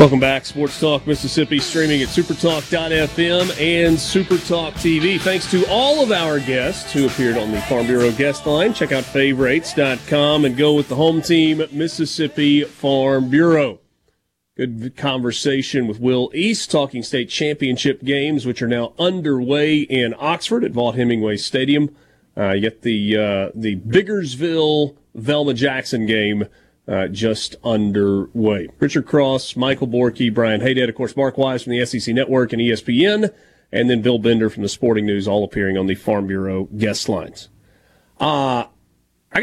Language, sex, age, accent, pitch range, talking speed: English, male, 30-49, American, 115-155 Hz, 155 wpm